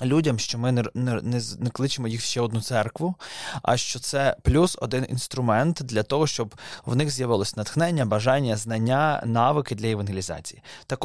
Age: 20-39